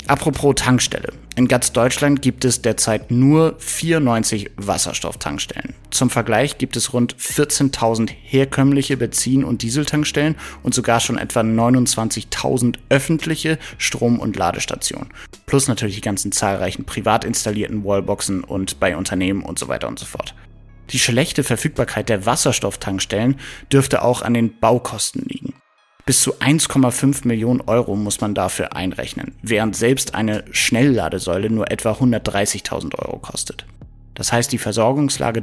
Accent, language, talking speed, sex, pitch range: German, German, 135 wpm, male, 105-130 Hz